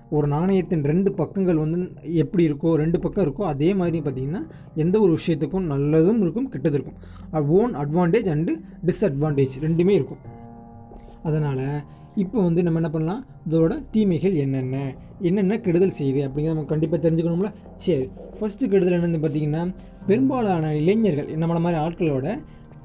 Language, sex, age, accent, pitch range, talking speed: Tamil, male, 20-39, native, 155-185 Hz, 135 wpm